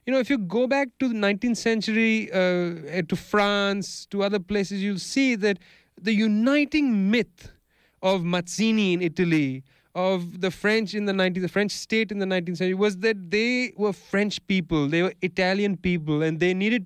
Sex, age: male, 30-49